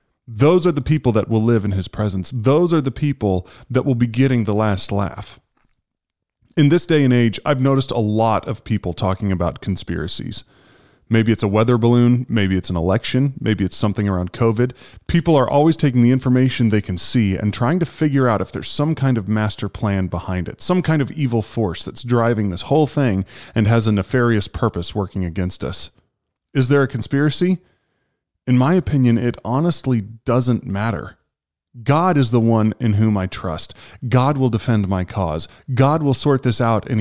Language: English